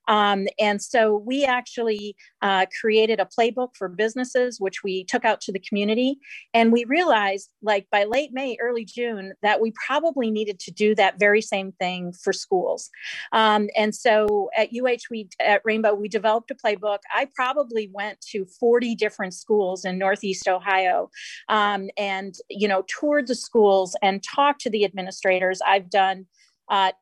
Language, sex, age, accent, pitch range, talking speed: English, female, 40-59, American, 195-235 Hz, 170 wpm